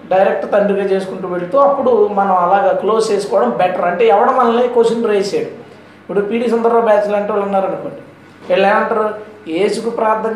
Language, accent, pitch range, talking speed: Telugu, native, 200-255 Hz, 145 wpm